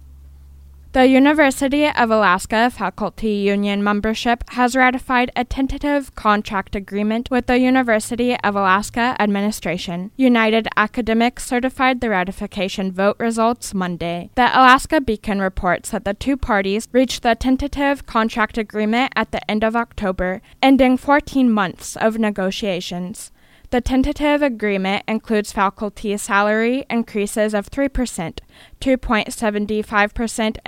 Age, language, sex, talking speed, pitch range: 10-29, English, female, 115 wpm, 200-250 Hz